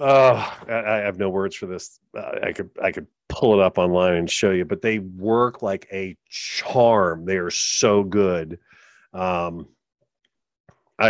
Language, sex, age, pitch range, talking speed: English, male, 40-59, 95-115 Hz, 160 wpm